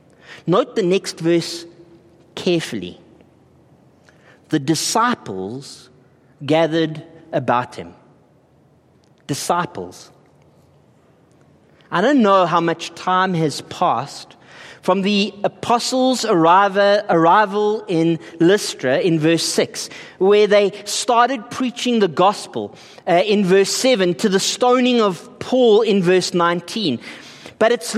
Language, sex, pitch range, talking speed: English, male, 170-230 Hz, 100 wpm